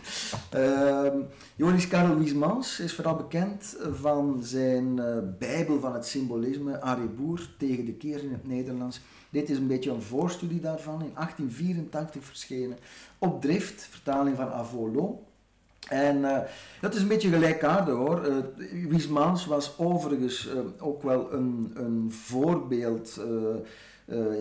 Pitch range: 115-145 Hz